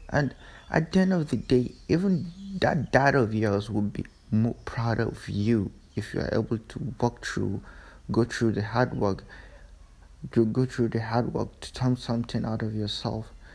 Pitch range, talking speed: 100-120 Hz, 185 wpm